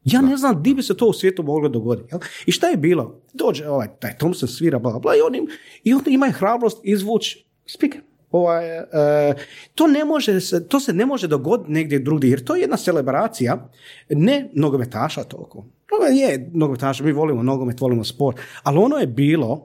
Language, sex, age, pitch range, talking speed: Croatian, male, 40-59, 130-190 Hz, 185 wpm